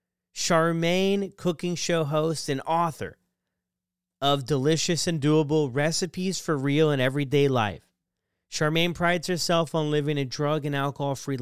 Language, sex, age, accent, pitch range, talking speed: English, male, 30-49, American, 135-165 Hz, 135 wpm